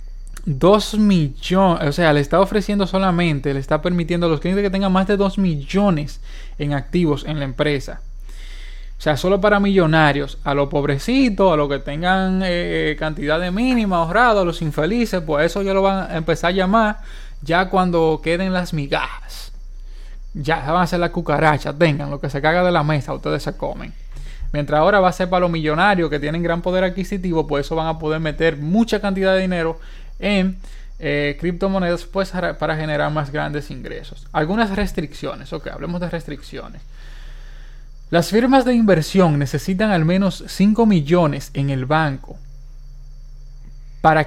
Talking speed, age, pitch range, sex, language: 170 wpm, 20-39, 145-190 Hz, male, Spanish